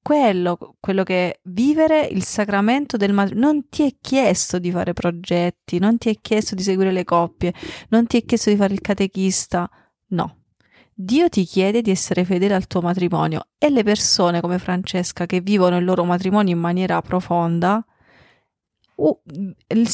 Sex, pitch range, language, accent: female, 175-225 Hz, Italian, native